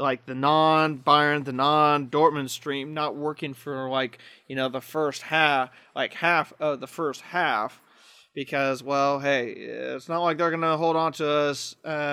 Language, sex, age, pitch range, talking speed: English, male, 30-49, 135-160 Hz, 175 wpm